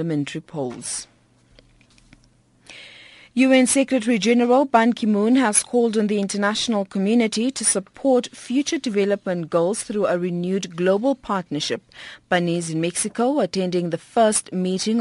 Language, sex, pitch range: English, female, 170-215 Hz